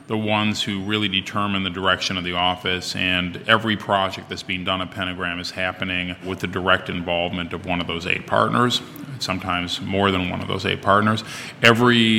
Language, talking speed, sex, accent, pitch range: English, 190 wpm, male, American, 95-110 Hz